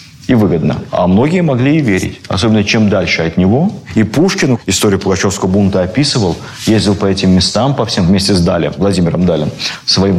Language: Russian